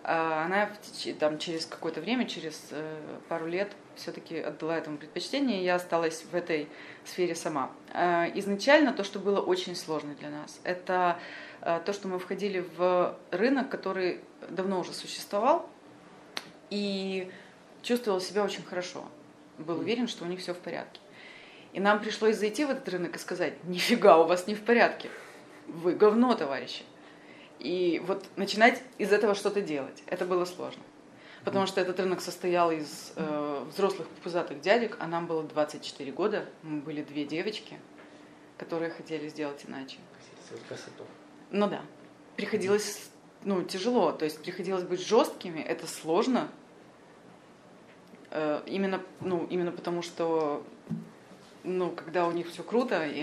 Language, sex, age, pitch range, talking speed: Russian, female, 30-49, 165-200 Hz, 145 wpm